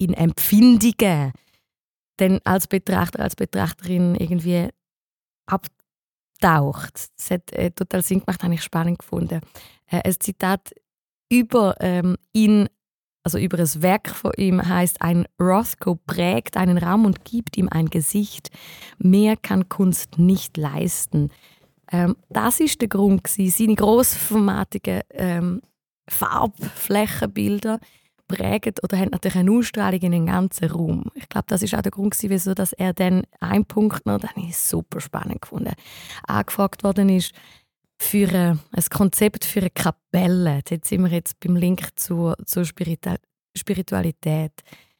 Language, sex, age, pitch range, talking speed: German, female, 20-39, 175-205 Hz, 135 wpm